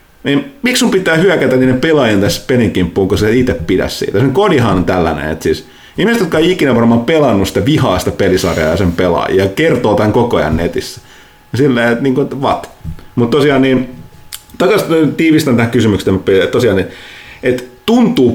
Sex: male